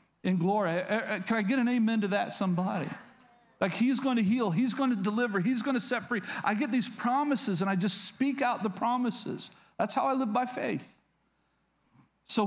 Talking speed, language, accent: 200 wpm, English, American